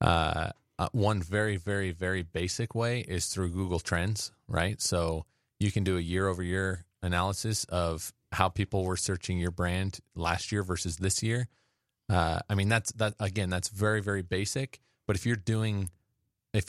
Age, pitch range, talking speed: 30-49, 90-110 Hz, 170 wpm